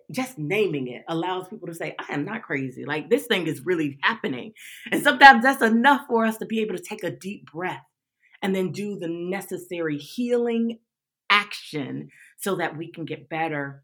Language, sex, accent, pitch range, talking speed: English, female, American, 145-175 Hz, 190 wpm